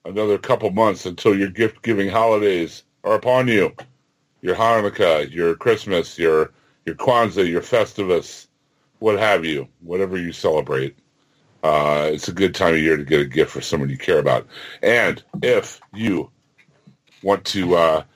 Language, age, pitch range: English, 60-79, 80-115 Hz